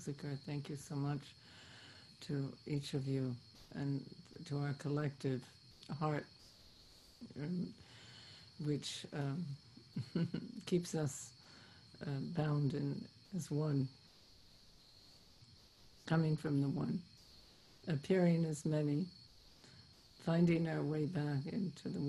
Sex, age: female, 60-79